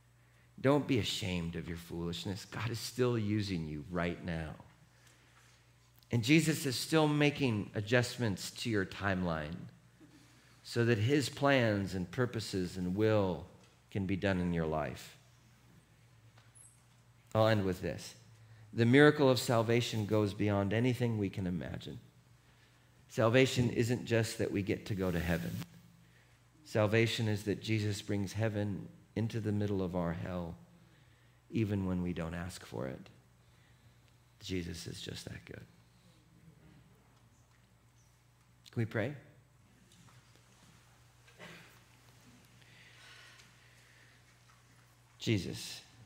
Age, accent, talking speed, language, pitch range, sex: 50-69, American, 115 wpm, English, 90-120 Hz, male